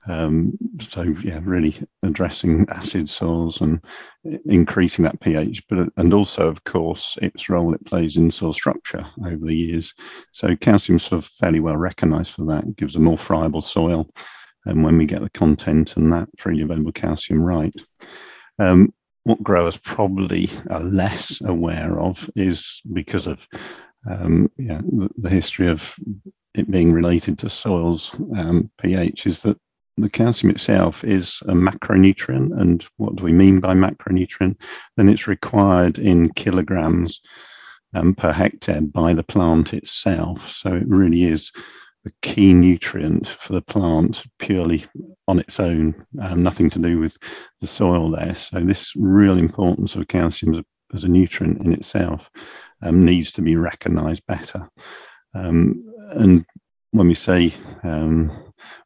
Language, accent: English, British